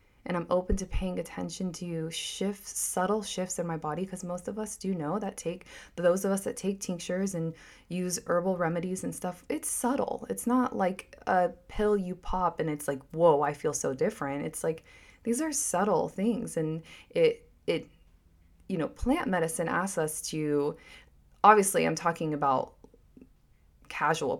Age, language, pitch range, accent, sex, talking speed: 20-39, English, 160-205 Hz, American, female, 175 wpm